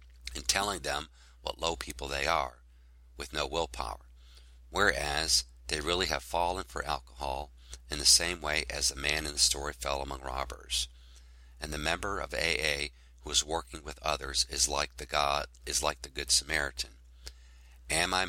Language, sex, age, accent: English, male, 50-69, American